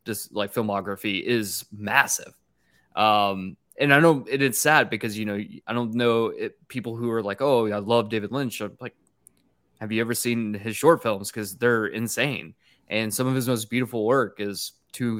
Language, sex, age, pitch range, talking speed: English, male, 20-39, 105-135 Hz, 195 wpm